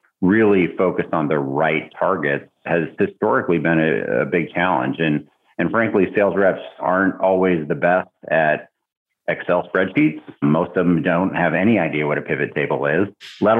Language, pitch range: English, 75-85 Hz